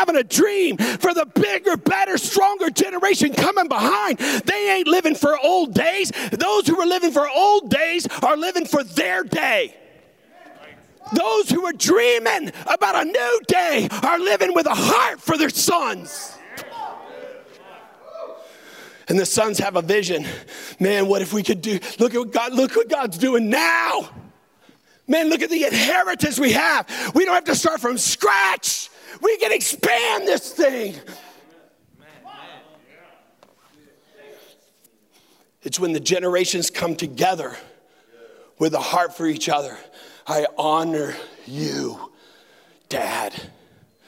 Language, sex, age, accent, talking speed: English, male, 40-59, American, 135 wpm